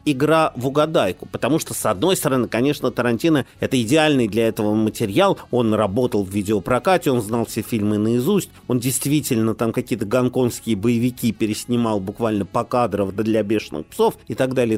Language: Russian